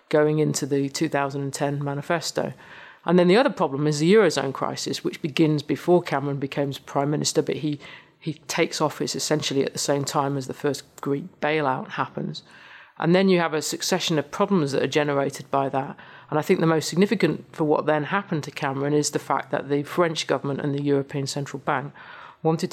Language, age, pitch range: English, 40-59, 140-165 Hz